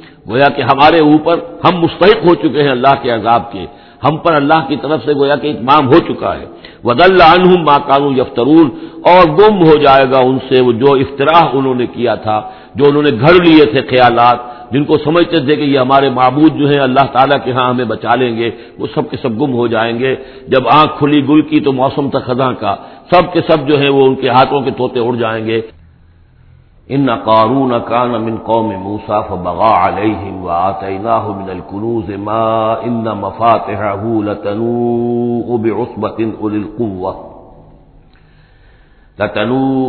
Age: 60-79